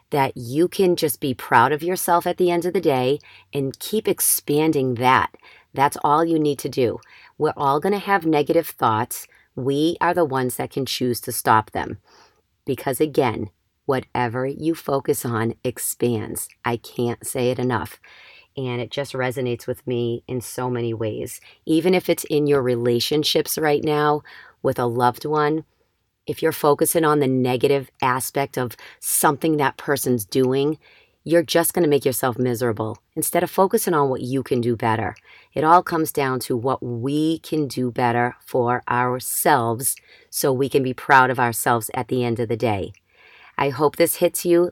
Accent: American